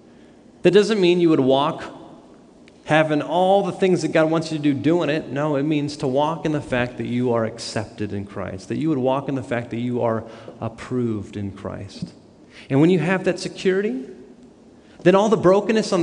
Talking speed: 210 wpm